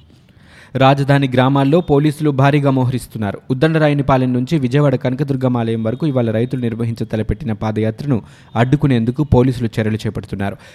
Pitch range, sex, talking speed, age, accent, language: 115-140 Hz, male, 110 wpm, 20-39, native, Telugu